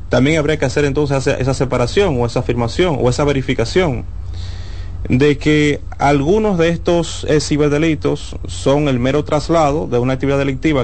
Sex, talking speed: male, 150 wpm